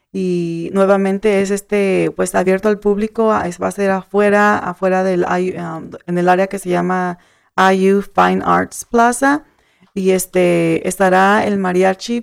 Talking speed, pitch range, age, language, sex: 150 wpm, 180-215 Hz, 30-49, English, female